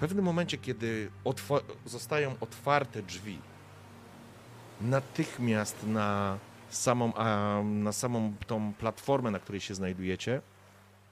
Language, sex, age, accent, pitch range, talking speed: Polish, male, 40-59, native, 100-130 Hz, 90 wpm